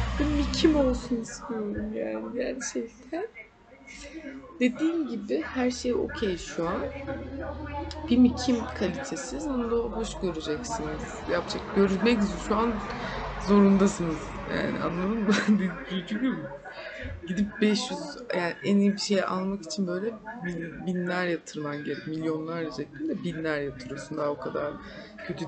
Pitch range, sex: 170-240 Hz, female